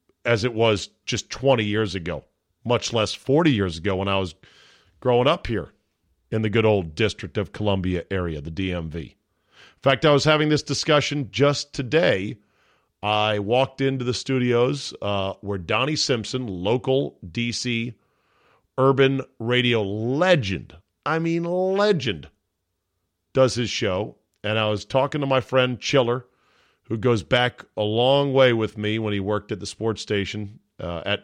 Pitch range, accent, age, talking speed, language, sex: 100-125 Hz, American, 40-59, 160 wpm, English, male